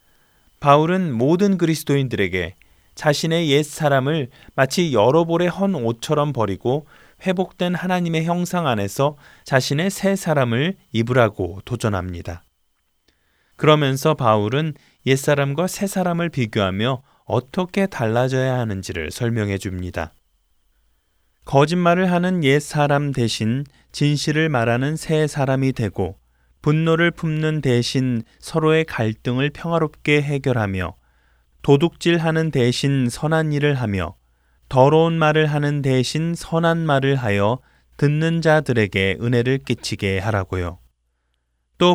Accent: native